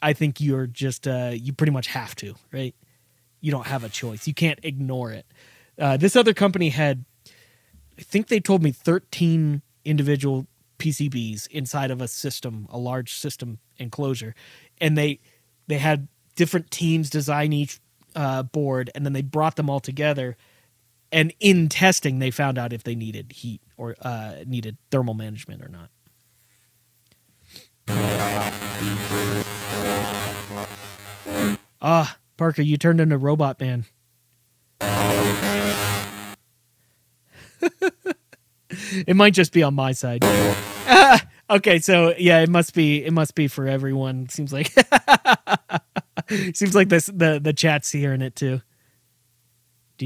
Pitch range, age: 120-155 Hz, 30-49